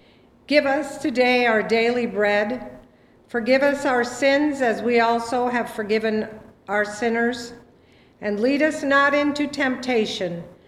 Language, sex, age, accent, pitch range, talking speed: English, female, 50-69, American, 180-235 Hz, 130 wpm